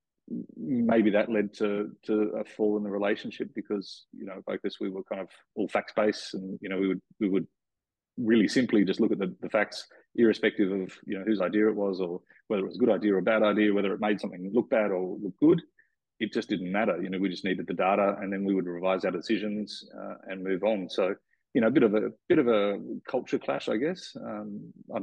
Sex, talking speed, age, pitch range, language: male, 245 wpm, 30-49, 95-105 Hz, English